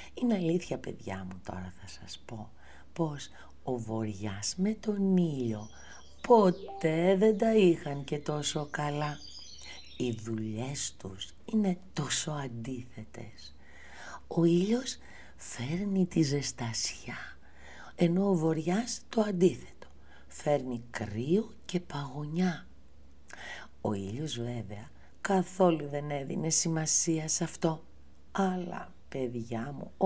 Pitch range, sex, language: 120-190 Hz, female, Greek